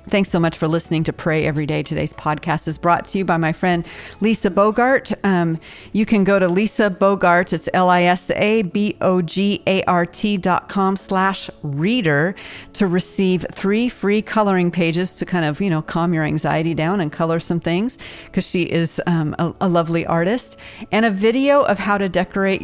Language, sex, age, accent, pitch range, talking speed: English, female, 40-59, American, 160-195 Hz, 180 wpm